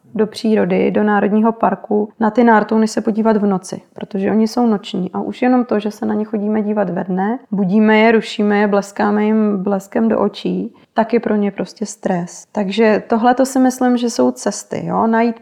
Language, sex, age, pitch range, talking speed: Czech, female, 20-39, 205-230 Hz, 205 wpm